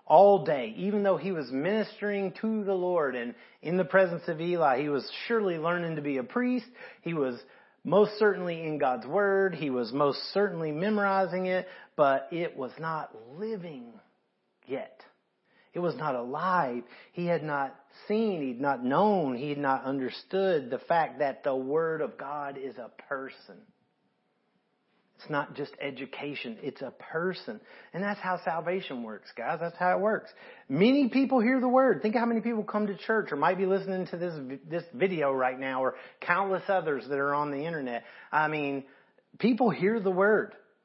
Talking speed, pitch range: 180 wpm, 145-205 Hz